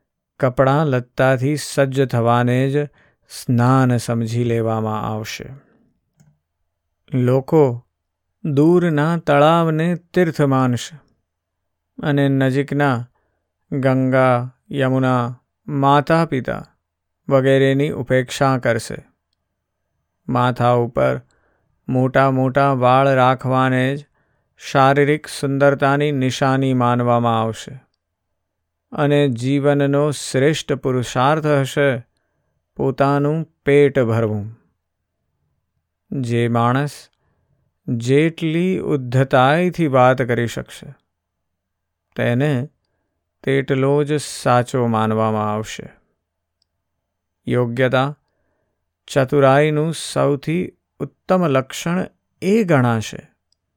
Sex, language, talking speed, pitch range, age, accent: male, Gujarati, 60 wpm, 110-145 Hz, 50-69, native